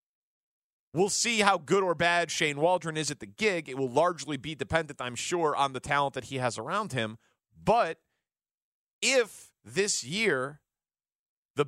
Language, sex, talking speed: English, male, 165 wpm